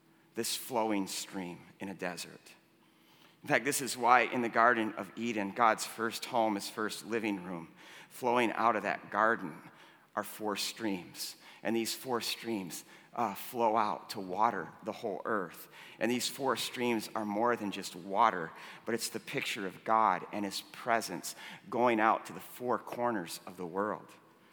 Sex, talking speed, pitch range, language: male, 170 wpm, 115-160 Hz, English